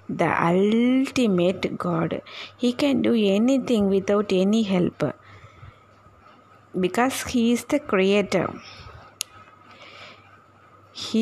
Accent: native